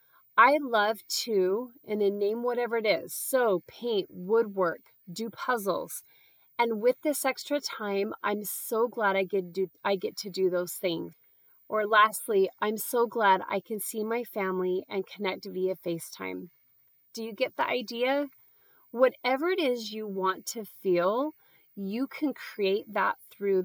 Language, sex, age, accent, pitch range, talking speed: English, female, 30-49, American, 190-240 Hz, 150 wpm